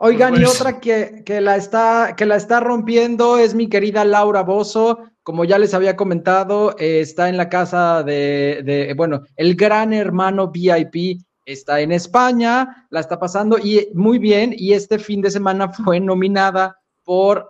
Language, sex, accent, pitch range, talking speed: English, male, Mexican, 155-205 Hz, 170 wpm